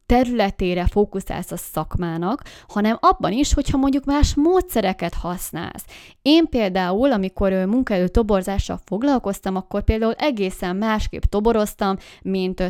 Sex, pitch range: female, 175-215 Hz